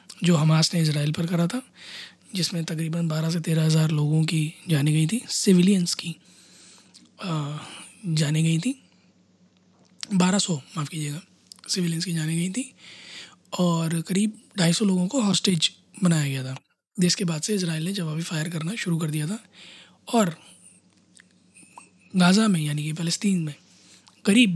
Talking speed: 155 wpm